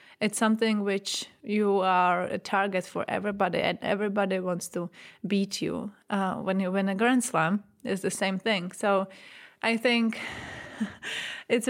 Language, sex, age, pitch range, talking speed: English, female, 20-39, 190-225 Hz, 155 wpm